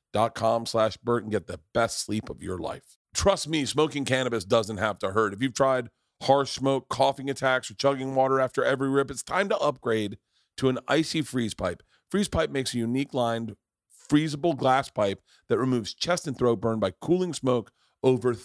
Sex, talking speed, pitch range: male, 200 wpm, 115-150 Hz